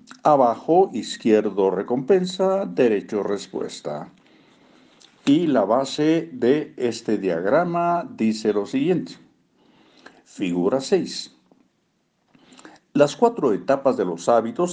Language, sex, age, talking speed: Spanish, male, 60-79, 90 wpm